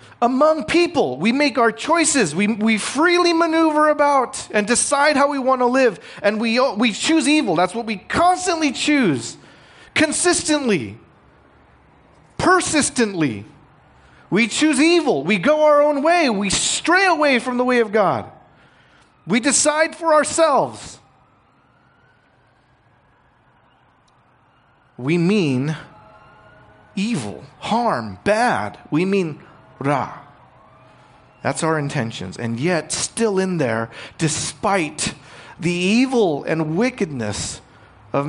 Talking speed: 115 wpm